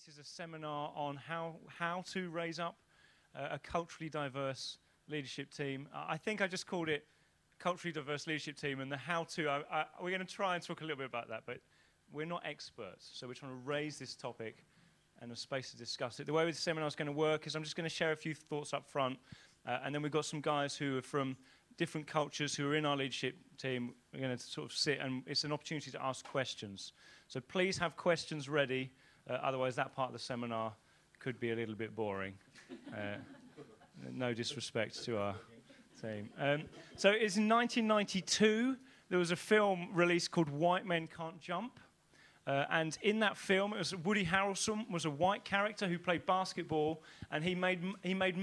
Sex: male